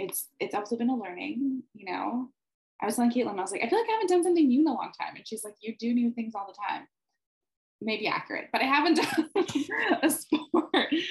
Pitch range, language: 175-260 Hz, English